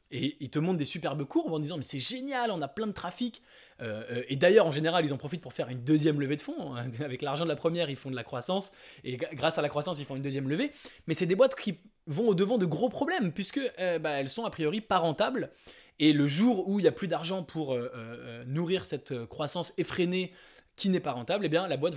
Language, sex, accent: English, male, French